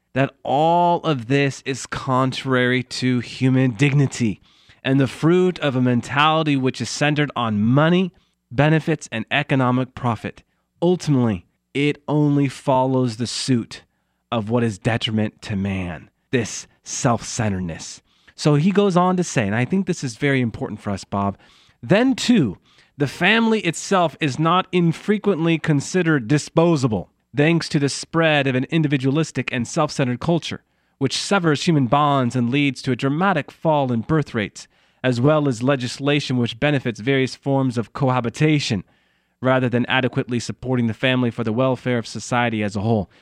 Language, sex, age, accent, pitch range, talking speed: English, male, 30-49, American, 115-150 Hz, 155 wpm